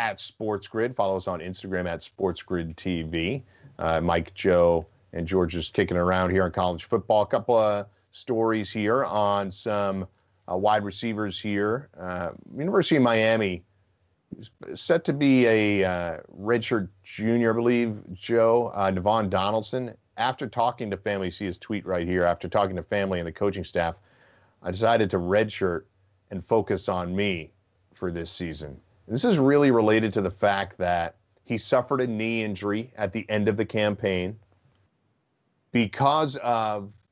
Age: 40-59